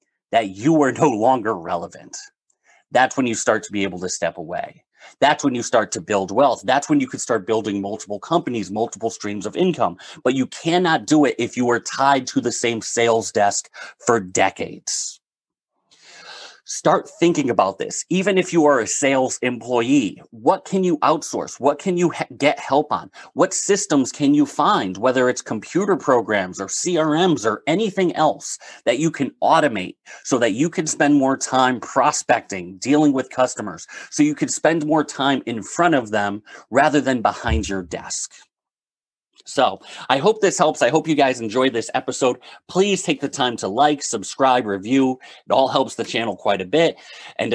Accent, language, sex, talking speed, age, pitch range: American, English, male, 185 wpm, 30-49, 120-160 Hz